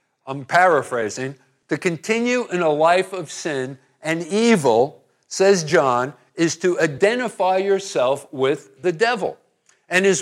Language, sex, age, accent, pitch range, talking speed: English, male, 50-69, American, 145-190 Hz, 130 wpm